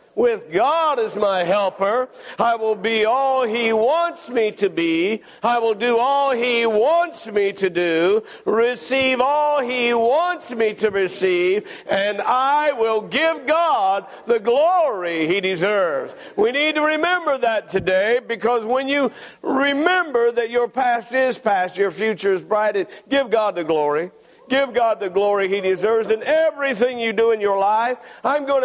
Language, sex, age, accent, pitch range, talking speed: English, male, 50-69, American, 220-280 Hz, 160 wpm